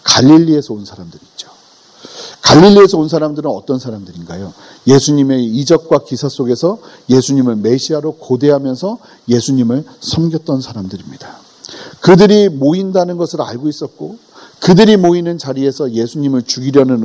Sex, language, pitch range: male, Korean, 125-160 Hz